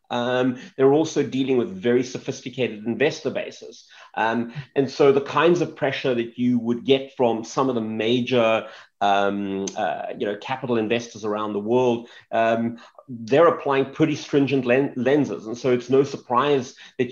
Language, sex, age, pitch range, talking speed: English, male, 30-49, 115-135 Hz, 165 wpm